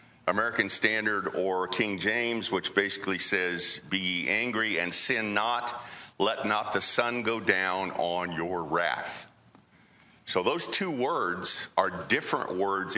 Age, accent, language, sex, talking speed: 50-69, American, English, male, 135 wpm